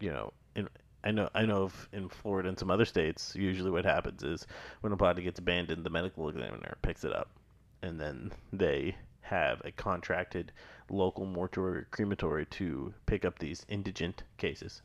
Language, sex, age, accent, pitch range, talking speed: English, male, 30-49, American, 90-105 Hz, 175 wpm